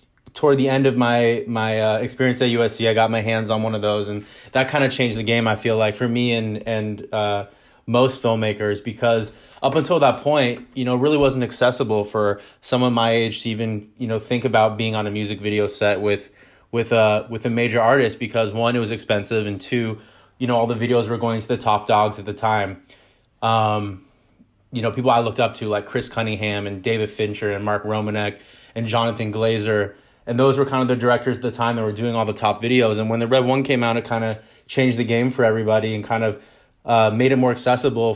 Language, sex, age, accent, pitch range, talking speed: English, male, 20-39, American, 110-125 Hz, 235 wpm